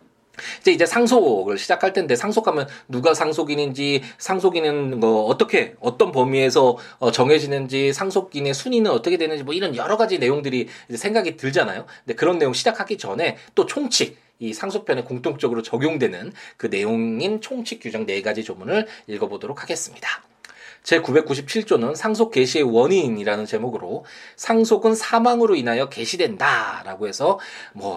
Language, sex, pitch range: Korean, male, 140-230 Hz